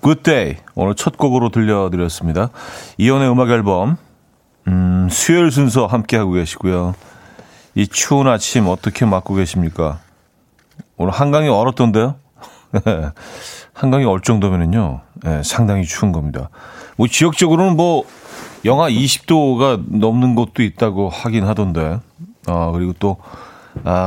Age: 40-59